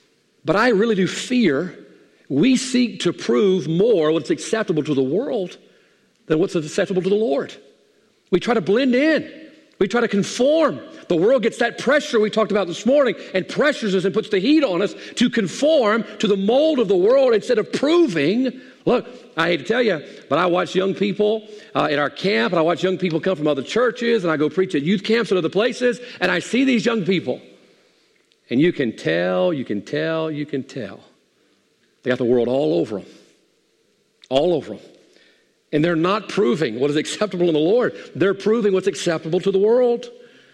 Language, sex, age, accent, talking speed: English, male, 50-69, American, 205 wpm